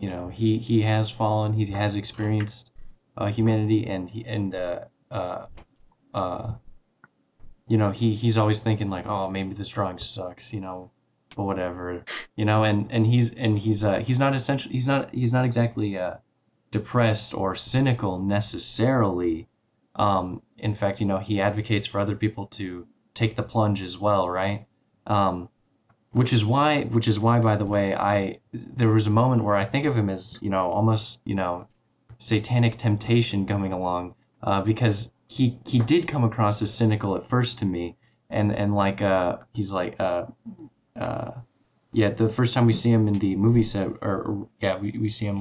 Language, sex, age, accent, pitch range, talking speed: English, male, 20-39, American, 95-115 Hz, 185 wpm